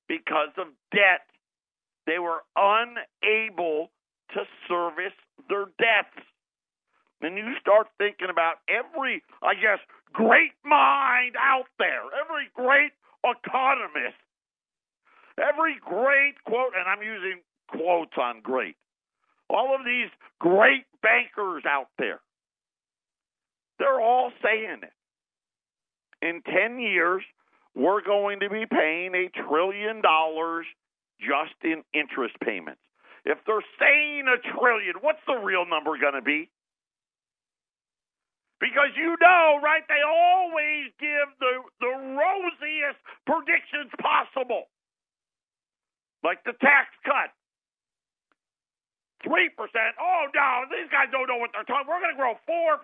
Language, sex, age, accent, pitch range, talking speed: English, male, 50-69, American, 190-290 Hz, 120 wpm